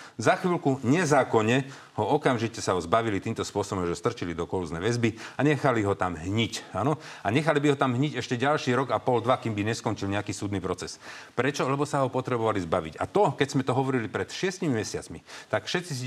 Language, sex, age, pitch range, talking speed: Slovak, male, 40-59, 100-135 Hz, 215 wpm